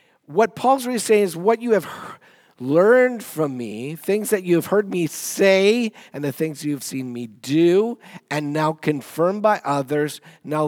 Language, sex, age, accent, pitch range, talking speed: English, male, 50-69, American, 150-205 Hz, 170 wpm